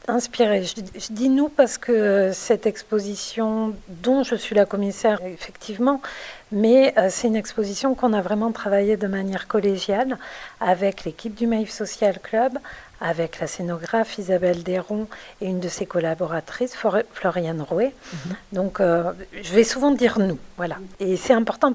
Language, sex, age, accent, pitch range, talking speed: French, female, 50-69, French, 185-235 Hz, 155 wpm